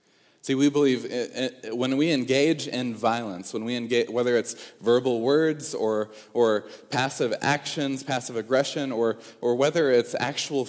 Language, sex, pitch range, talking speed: English, male, 115-150 Hz, 155 wpm